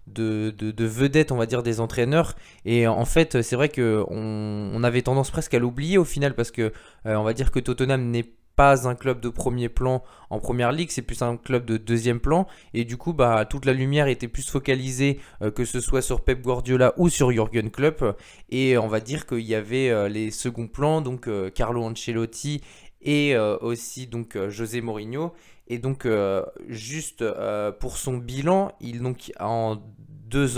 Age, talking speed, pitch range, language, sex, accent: 20-39, 200 wpm, 115-140 Hz, French, male, French